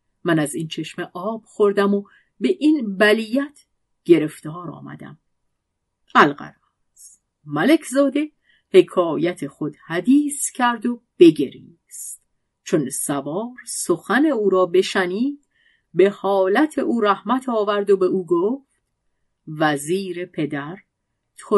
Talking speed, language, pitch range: 110 wpm, Persian, 160-250 Hz